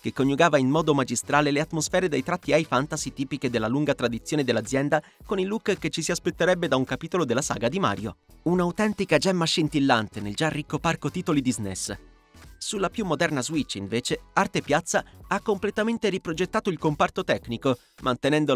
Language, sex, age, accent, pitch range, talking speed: Italian, male, 30-49, native, 130-180 Hz, 175 wpm